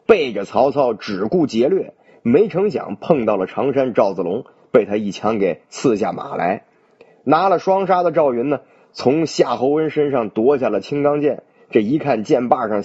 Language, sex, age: Chinese, male, 30-49